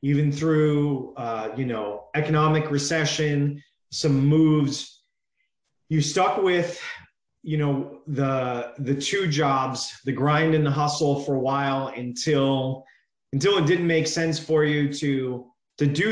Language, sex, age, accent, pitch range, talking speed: English, male, 30-49, American, 135-155 Hz, 140 wpm